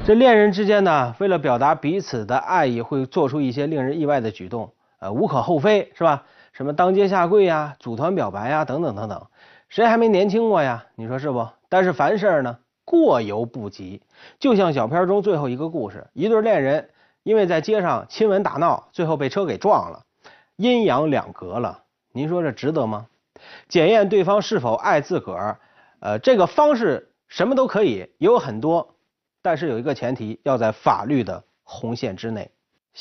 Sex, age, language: male, 30-49, Chinese